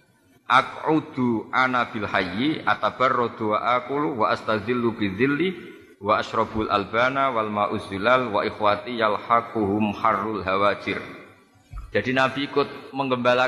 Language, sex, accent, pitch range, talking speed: Indonesian, male, native, 105-125 Hz, 80 wpm